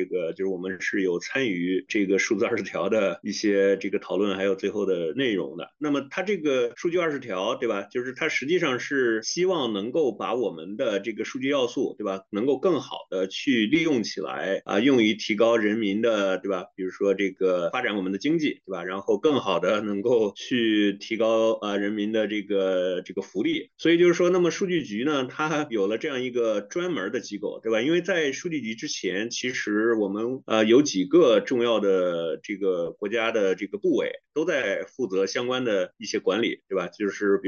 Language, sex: Chinese, male